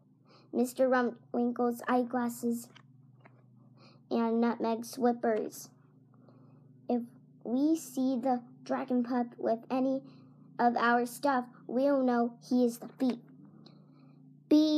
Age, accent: 10-29, American